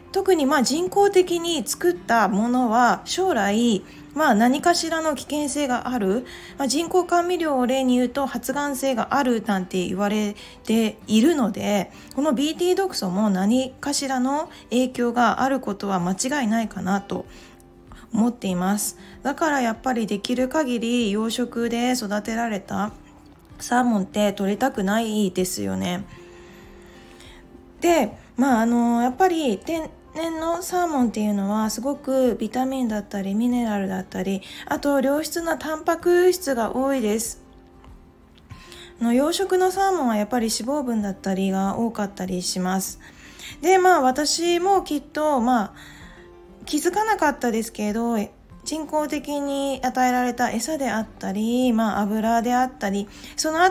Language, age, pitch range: Japanese, 20-39, 210-290 Hz